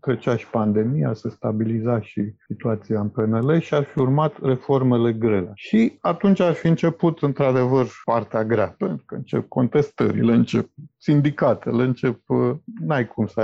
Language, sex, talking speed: Romanian, male, 145 wpm